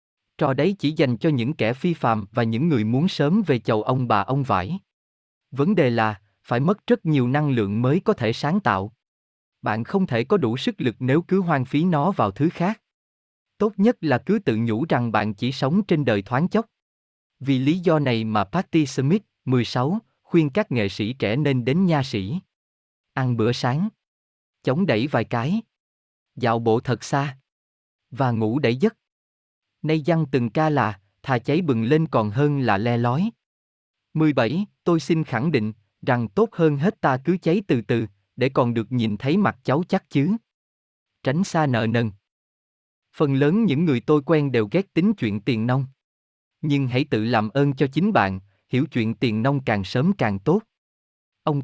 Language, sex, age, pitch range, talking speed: Vietnamese, male, 20-39, 110-160 Hz, 195 wpm